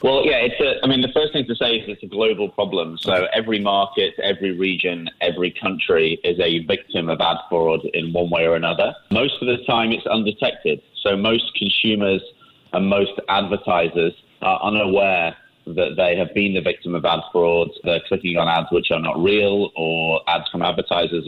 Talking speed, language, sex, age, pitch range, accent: 195 wpm, English, male, 30-49, 85-105 Hz, British